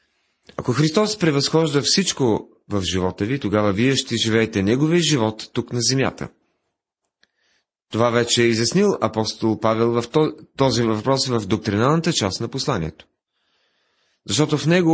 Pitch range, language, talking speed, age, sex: 105-145 Hz, Bulgarian, 135 wpm, 30-49, male